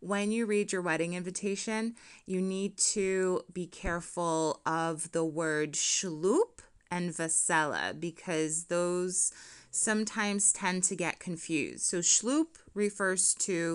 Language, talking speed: English, 120 wpm